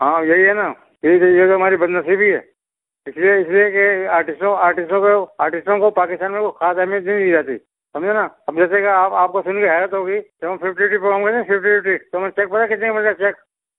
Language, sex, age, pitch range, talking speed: Urdu, male, 60-79, 165-195 Hz, 165 wpm